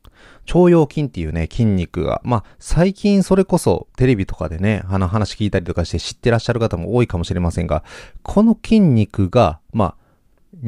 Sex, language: male, Japanese